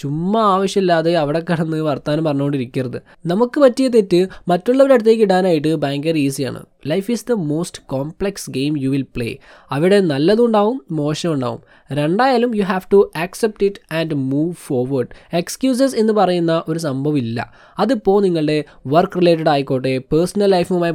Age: 20-39